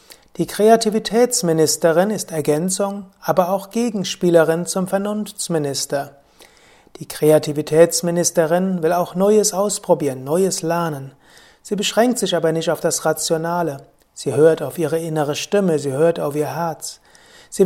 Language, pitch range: German, 155-195 Hz